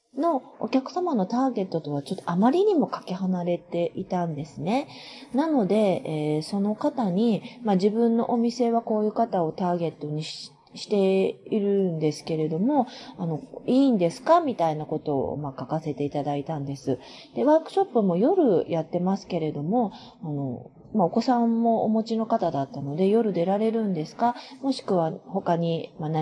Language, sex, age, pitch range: Japanese, female, 30-49, 155-235 Hz